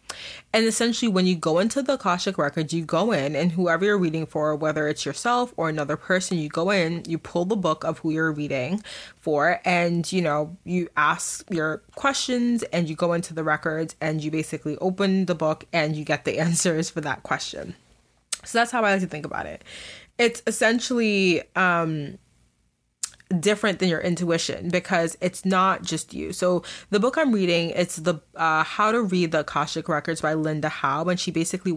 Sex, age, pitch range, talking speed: female, 20-39, 155-190 Hz, 195 wpm